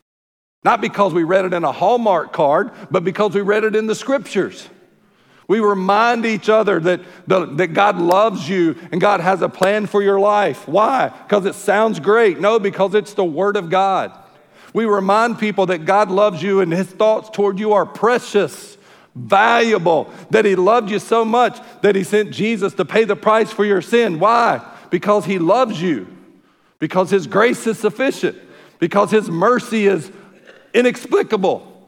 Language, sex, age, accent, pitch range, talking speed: English, male, 50-69, American, 165-210 Hz, 175 wpm